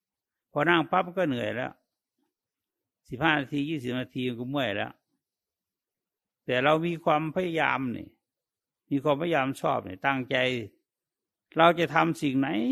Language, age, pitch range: English, 60-79, 125-155 Hz